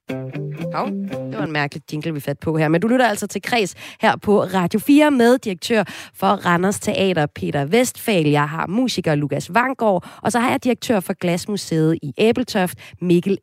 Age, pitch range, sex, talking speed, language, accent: 30-49, 160-235 Hz, female, 190 wpm, Danish, native